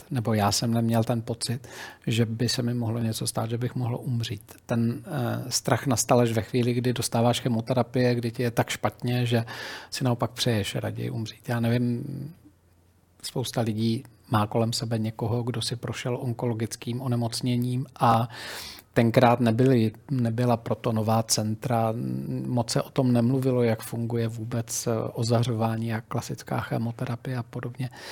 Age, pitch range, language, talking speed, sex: 40-59, 115-130 Hz, Czech, 150 wpm, male